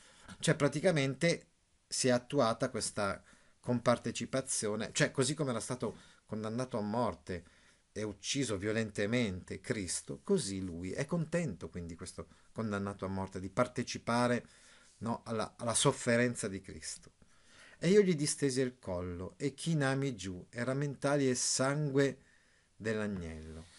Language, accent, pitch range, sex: Italian, native, 105-140 Hz, male